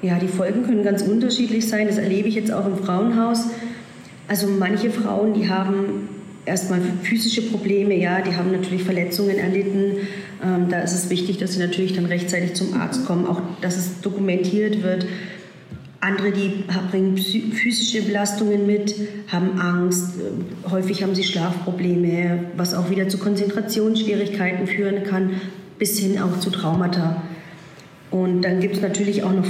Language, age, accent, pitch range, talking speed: German, 40-59, German, 180-200 Hz, 155 wpm